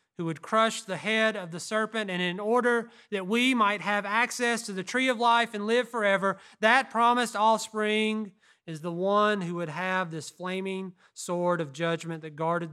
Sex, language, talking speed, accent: male, English, 190 wpm, American